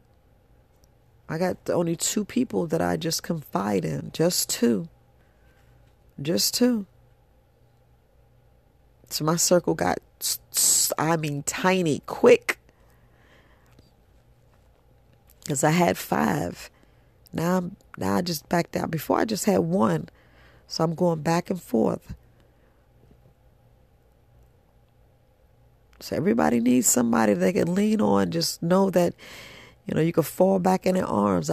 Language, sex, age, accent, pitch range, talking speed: English, female, 40-59, American, 115-185 Hz, 125 wpm